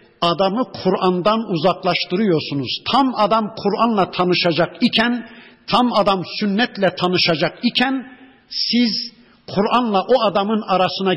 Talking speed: 95 wpm